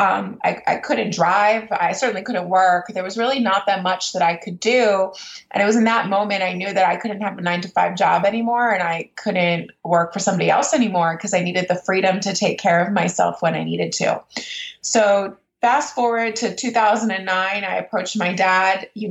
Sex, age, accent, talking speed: female, 20-39, American, 215 wpm